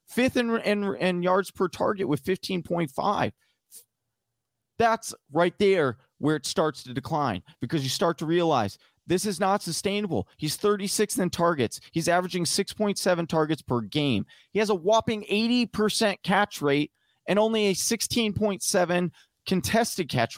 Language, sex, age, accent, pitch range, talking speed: English, male, 30-49, American, 125-180 Hz, 140 wpm